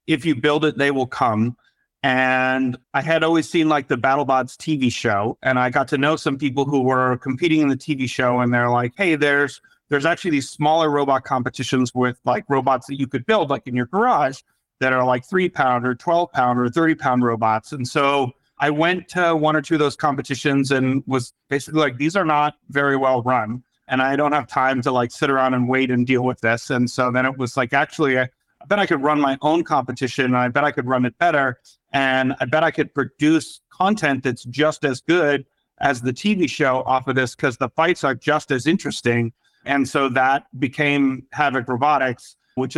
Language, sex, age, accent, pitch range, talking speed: English, male, 40-59, American, 130-150 Hz, 220 wpm